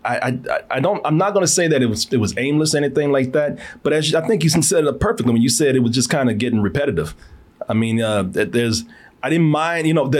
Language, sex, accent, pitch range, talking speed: English, male, American, 110-150 Hz, 275 wpm